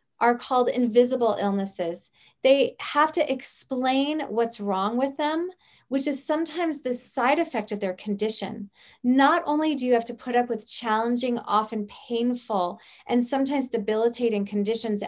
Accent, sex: American, female